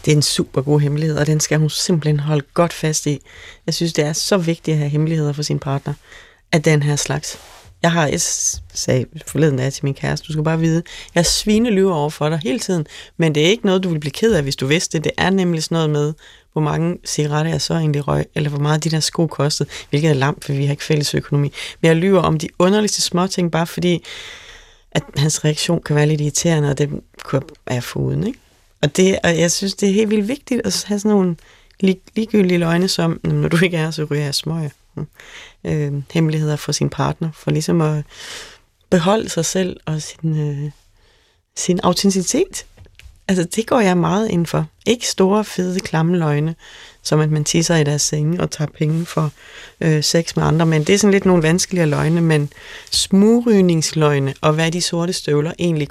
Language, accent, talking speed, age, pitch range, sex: Danish, native, 220 wpm, 30-49, 150-180 Hz, female